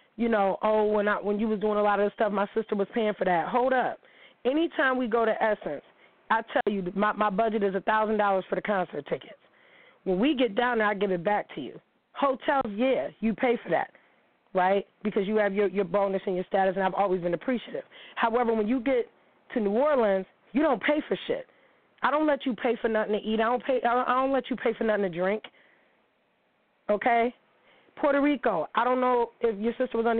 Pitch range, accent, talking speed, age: 205-250 Hz, American, 235 wpm, 20-39